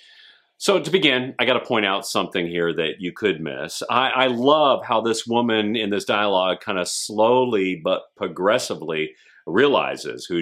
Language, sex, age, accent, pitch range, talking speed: English, male, 40-59, American, 95-150 Hz, 165 wpm